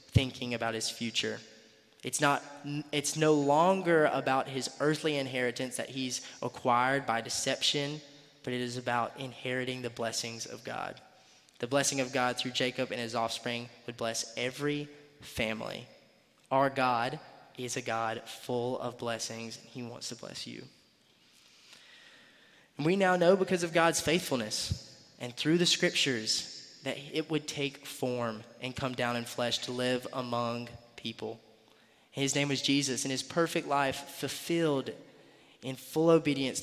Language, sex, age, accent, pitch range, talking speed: English, male, 20-39, American, 120-145 Hz, 150 wpm